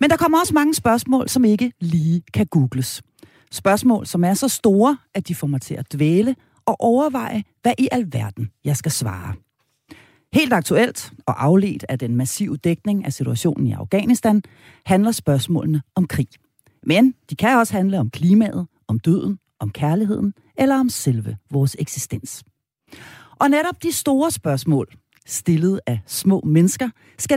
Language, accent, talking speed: Danish, native, 160 wpm